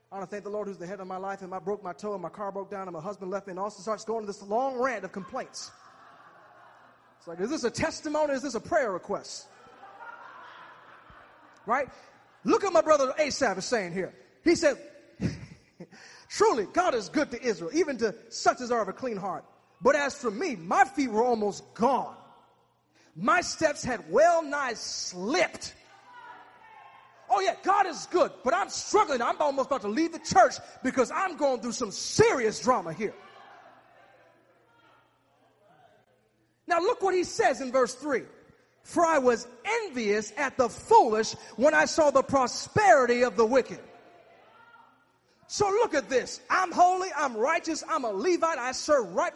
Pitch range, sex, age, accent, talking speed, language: 215-335 Hz, male, 30-49, American, 180 wpm, English